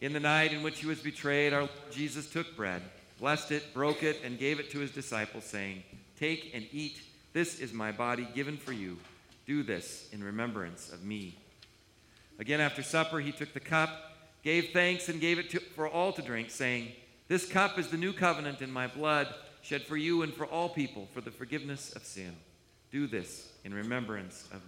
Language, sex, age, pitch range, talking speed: English, male, 50-69, 105-140 Hz, 200 wpm